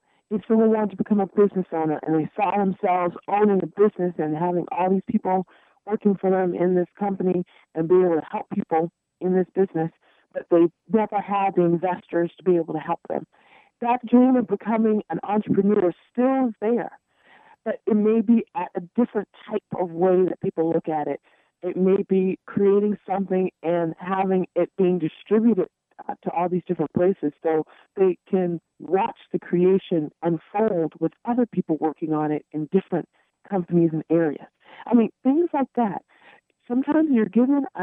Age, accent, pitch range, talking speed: 40-59, American, 170-215 Hz, 180 wpm